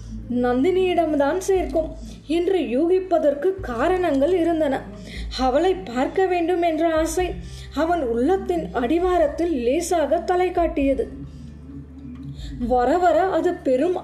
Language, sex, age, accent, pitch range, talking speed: Tamil, female, 20-39, native, 295-355 Hz, 80 wpm